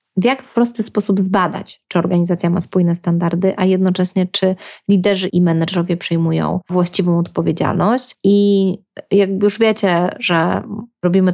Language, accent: Polish, native